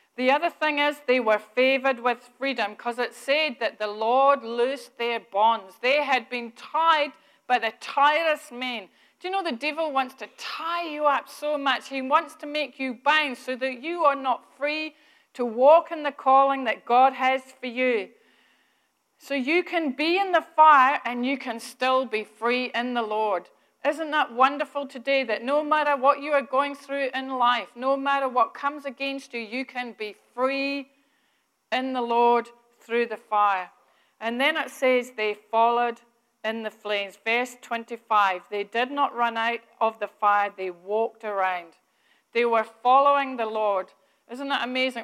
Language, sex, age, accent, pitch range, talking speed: English, female, 40-59, British, 230-280 Hz, 180 wpm